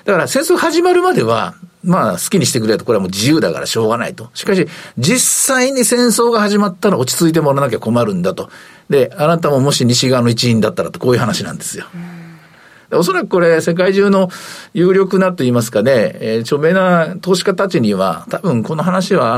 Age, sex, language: 50-69, male, Japanese